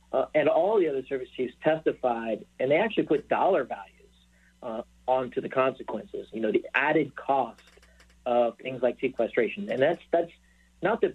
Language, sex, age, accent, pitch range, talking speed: English, male, 50-69, American, 115-150 Hz, 170 wpm